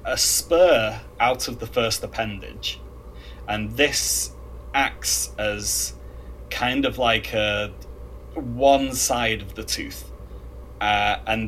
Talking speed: 115 wpm